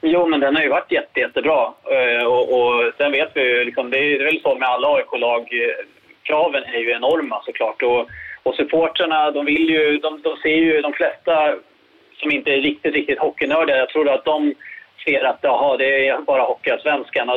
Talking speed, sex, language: 195 wpm, male, English